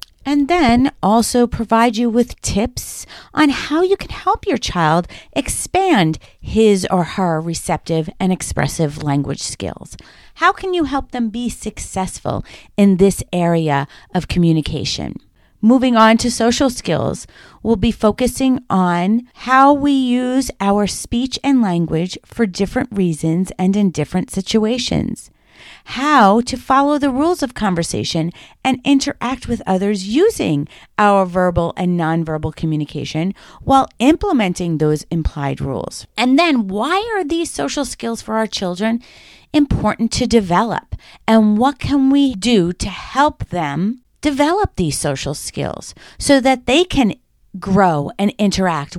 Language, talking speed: English, 135 wpm